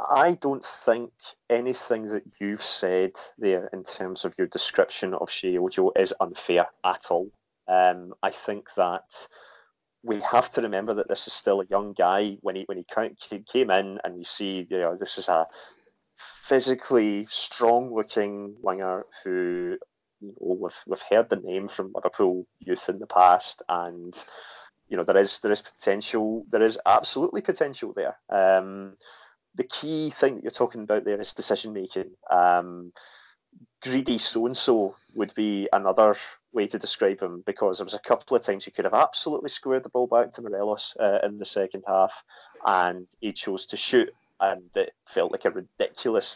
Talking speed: 170 wpm